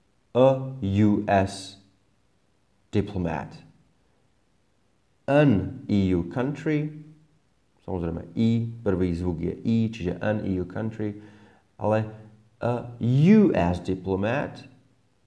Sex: male